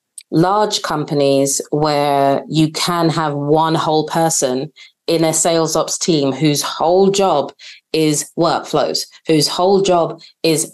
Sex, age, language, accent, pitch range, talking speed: female, 20-39, English, British, 150-170 Hz, 130 wpm